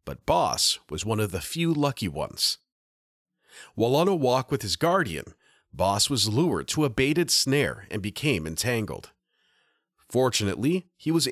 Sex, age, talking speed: male, 40-59, 155 wpm